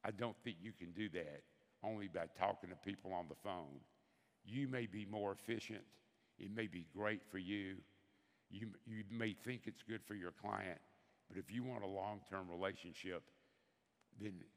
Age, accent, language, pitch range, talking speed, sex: 60-79, American, English, 95-115 Hz, 180 wpm, male